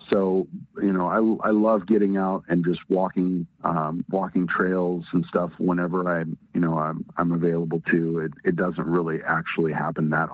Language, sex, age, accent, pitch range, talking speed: English, male, 40-59, American, 80-90 Hz, 180 wpm